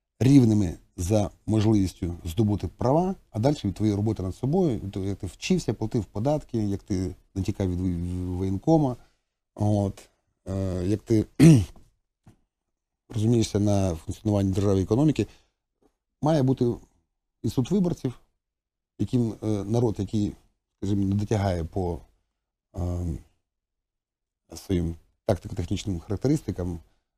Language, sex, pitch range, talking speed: Ukrainian, male, 90-120 Hz, 95 wpm